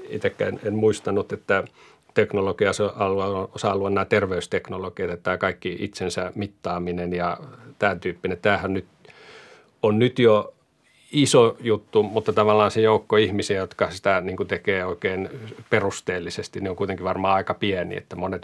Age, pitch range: 40-59, 95-110 Hz